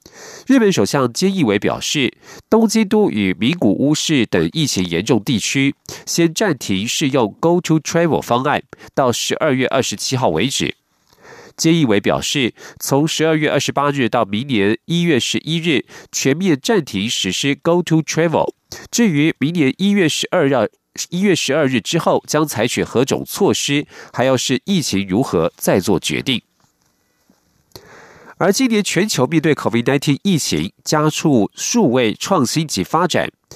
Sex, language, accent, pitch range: male, German, Chinese, 125-170 Hz